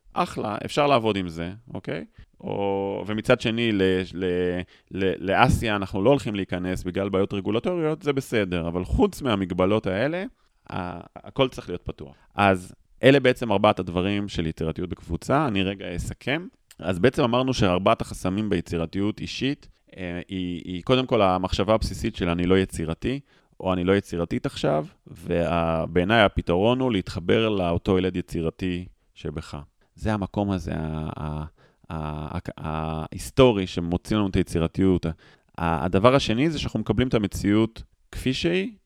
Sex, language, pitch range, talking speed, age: male, English, 90-115 Hz, 115 wpm, 30-49